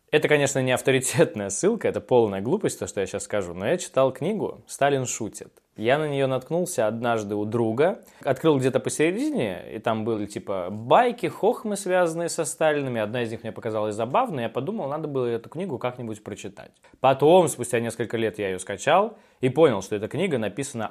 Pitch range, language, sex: 120-170 Hz, Russian, male